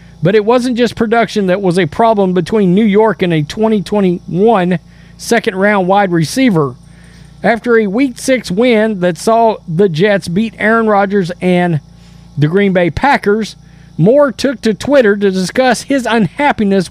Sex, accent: male, American